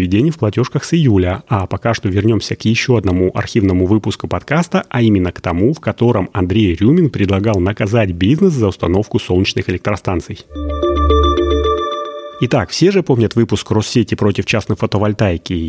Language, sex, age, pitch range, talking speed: Russian, male, 30-49, 95-125 Hz, 145 wpm